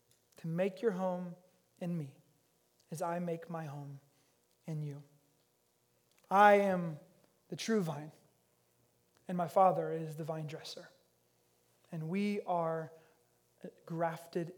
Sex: male